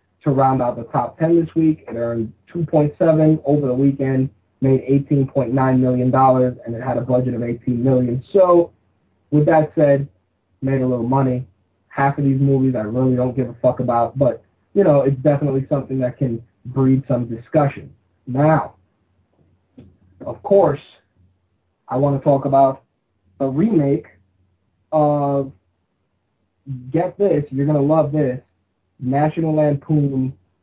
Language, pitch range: English, 120-140 Hz